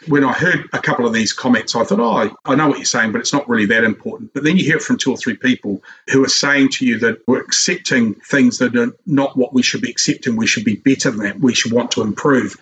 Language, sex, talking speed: English, male, 285 wpm